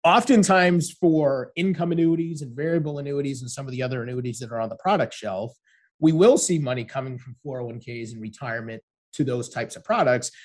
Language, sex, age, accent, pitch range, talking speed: English, male, 30-49, American, 120-160 Hz, 190 wpm